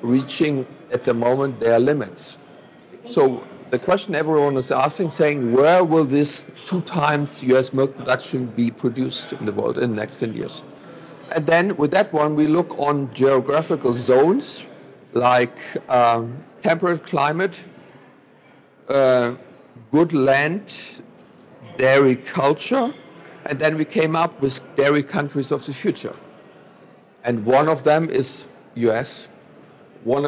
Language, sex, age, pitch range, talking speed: English, male, 50-69, 125-150 Hz, 135 wpm